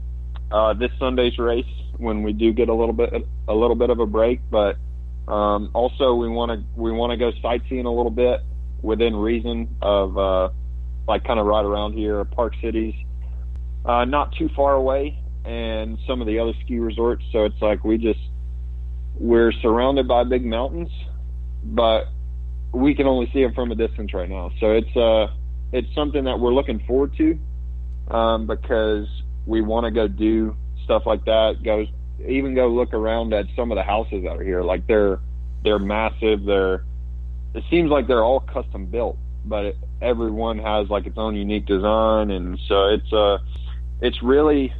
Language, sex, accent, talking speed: English, male, American, 185 wpm